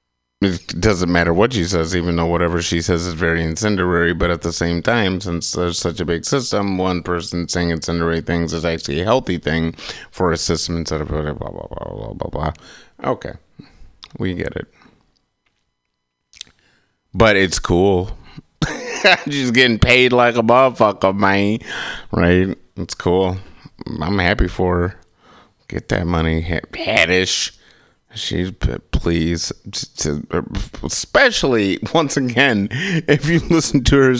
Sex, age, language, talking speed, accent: male, 30-49, English, 145 wpm, American